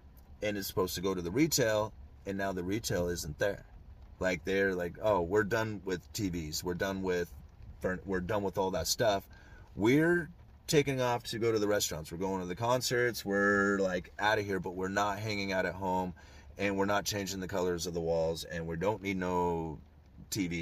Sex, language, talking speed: male, English, 200 wpm